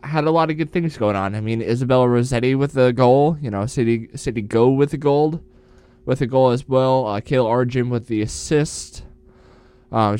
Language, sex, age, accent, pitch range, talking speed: English, male, 20-39, American, 115-150 Hz, 205 wpm